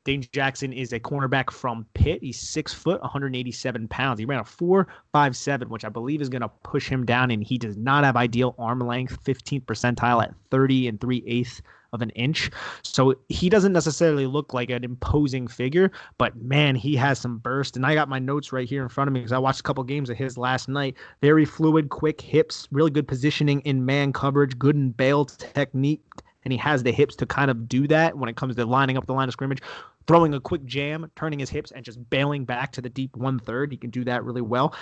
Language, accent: English, American